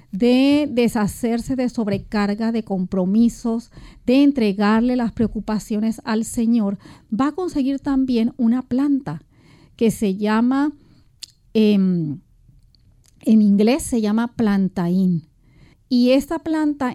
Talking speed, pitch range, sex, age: 105 wpm, 205-265 Hz, female, 40-59